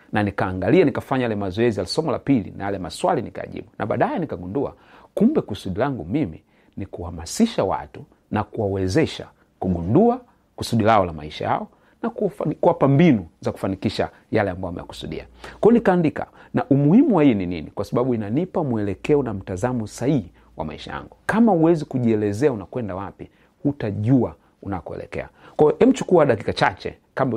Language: Swahili